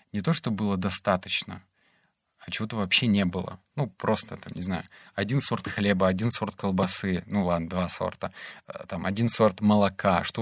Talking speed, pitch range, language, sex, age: 175 wpm, 95-110 Hz, Russian, male, 20-39